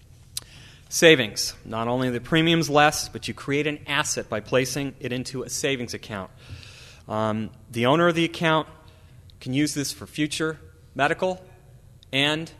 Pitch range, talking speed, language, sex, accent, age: 115-150 Hz, 150 wpm, English, male, American, 30-49